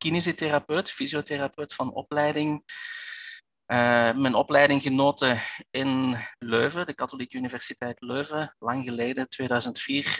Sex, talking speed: male, 100 wpm